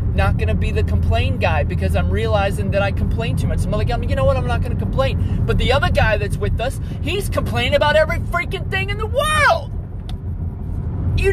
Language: English